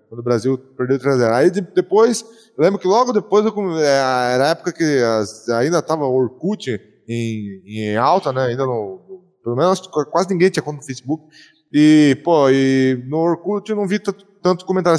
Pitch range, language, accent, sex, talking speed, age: 130-175 Hz, Portuguese, Brazilian, male, 185 wpm, 20-39